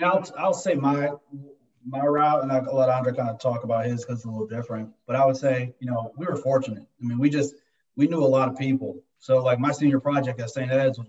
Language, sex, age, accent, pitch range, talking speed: English, male, 30-49, American, 120-135 Hz, 265 wpm